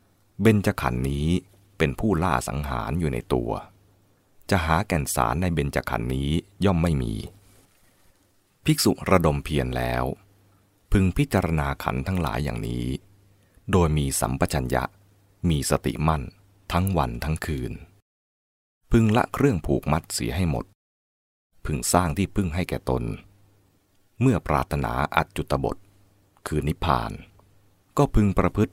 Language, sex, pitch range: English, male, 70-100 Hz